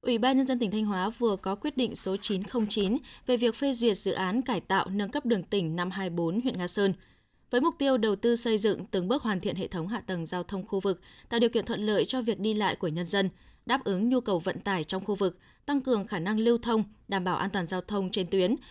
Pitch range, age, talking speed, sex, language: 195-245 Hz, 20-39, 270 wpm, female, Vietnamese